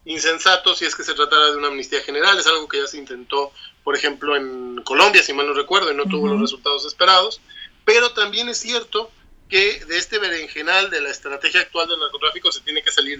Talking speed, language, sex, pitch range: 220 wpm, Spanish, male, 155-215 Hz